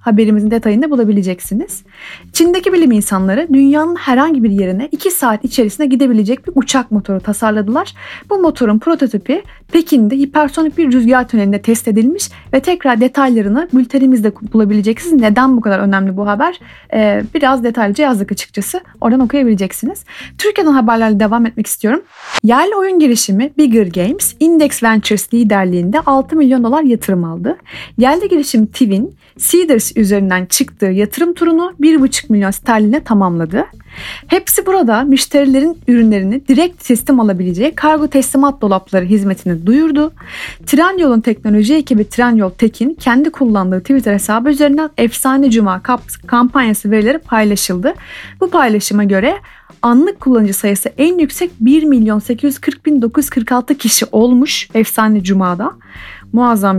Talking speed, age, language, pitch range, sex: 125 wpm, 30-49, Turkish, 210-290 Hz, female